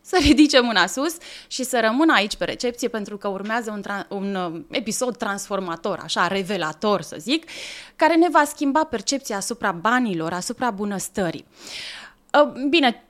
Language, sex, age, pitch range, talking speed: Romanian, female, 20-39, 200-275 Hz, 145 wpm